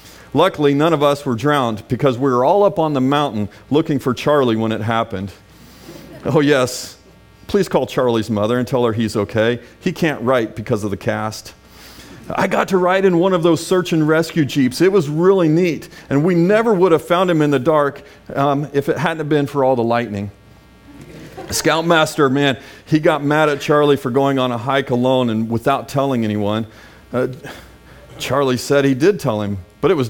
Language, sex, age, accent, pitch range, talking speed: English, male, 40-59, American, 115-165 Hz, 200 wpm